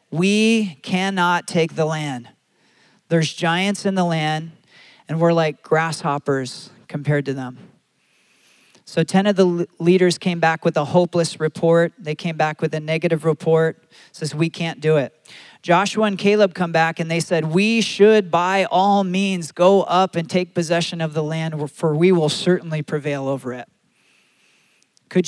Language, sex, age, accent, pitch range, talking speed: English, male, 40-59, American, 160-190 Hz, 165 wpm